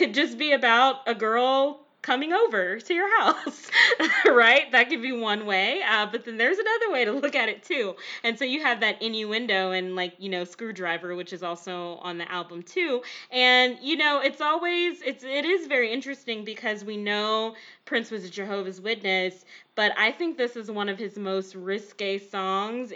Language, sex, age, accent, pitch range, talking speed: English, female, 20-39, American, 190-245 Hz, 200 wpm